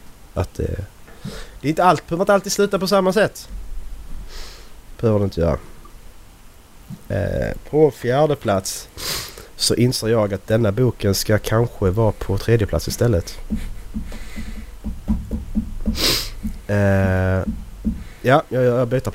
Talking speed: 120 wpm